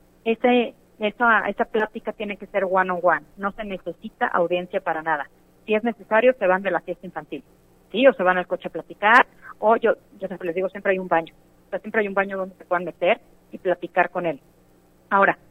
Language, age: Spanish, 40-59